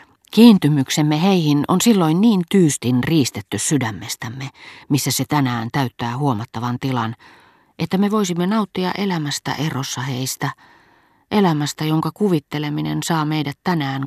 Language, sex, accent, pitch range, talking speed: Finnish, female, native, 130-160 Hz, 115 wpm